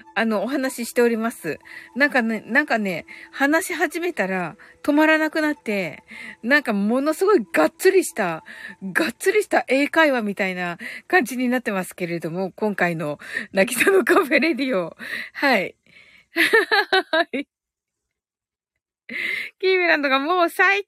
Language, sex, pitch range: Japanese, female, 270-400 Hz